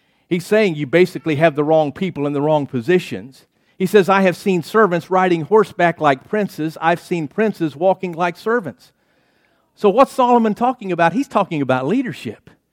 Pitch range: 185-250 Hz